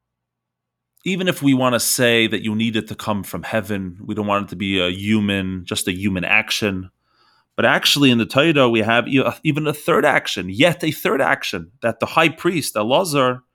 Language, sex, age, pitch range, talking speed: English, male, 30-49, 100-130 Hz, 205 wpm